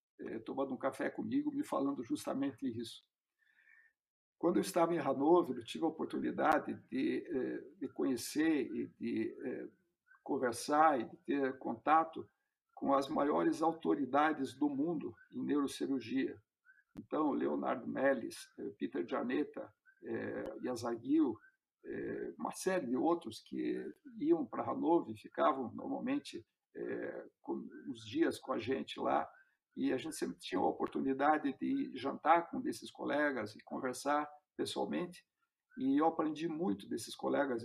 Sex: male